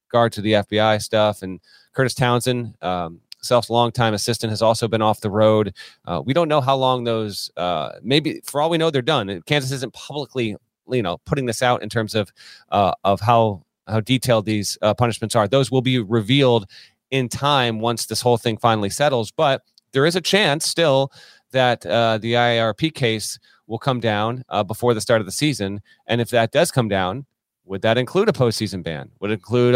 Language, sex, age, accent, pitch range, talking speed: English, male, 30-49, American, 110-130 Hz, 205 wpm